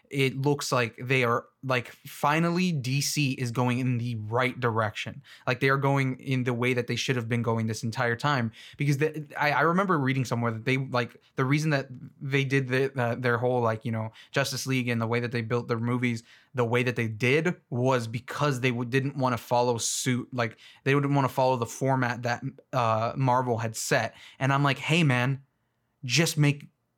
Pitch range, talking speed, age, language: 120-150 Hz, 205 wpm, 20-39, English